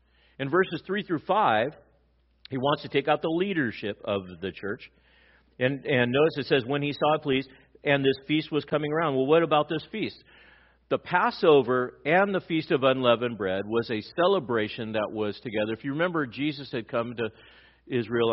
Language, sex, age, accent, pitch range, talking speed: English, male, 50-69, American, 110-155 Hz, 190 wpm